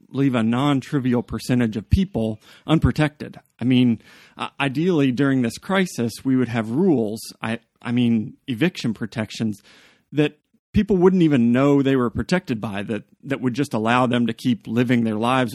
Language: English